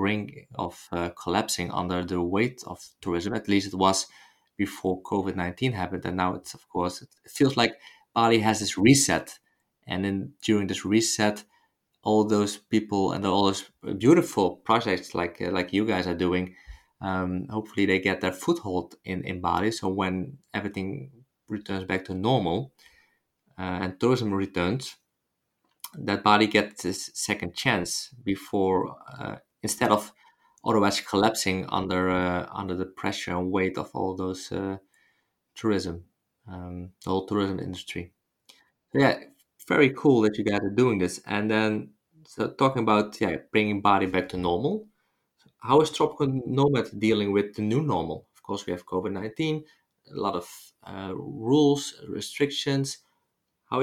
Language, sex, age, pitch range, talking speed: Dutch, male, 20-39, 90-110 Hz, 155 wpm